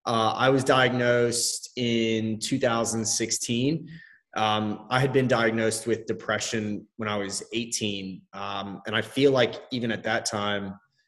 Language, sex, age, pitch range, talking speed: English, male, 20-39, 105-120 Hz, 140 wpm